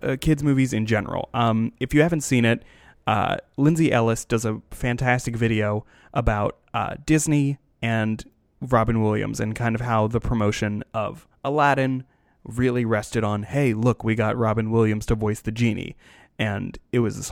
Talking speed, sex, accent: 165 wpm, male, American